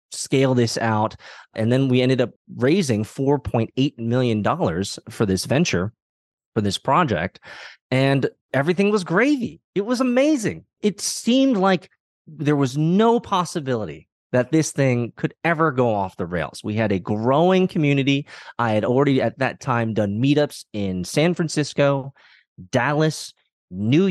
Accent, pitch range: American, 115-150 Hz